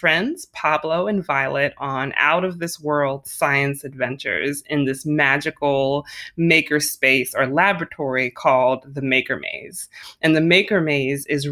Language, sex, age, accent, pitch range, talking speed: English, female, 20-39, American, 140-170 Hz, 125 wpm